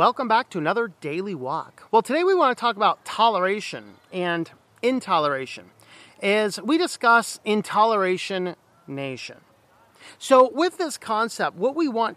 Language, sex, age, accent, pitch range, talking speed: English, male, 40-59, American, 185-255 Hz, 140 wpm